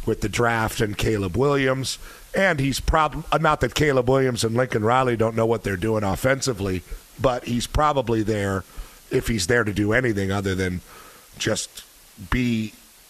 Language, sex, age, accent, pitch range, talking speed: English, male, 50-69, American, 105-130 Hz, 165 wpm